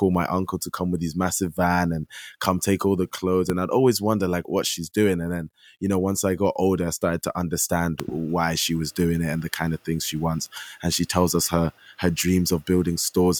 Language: English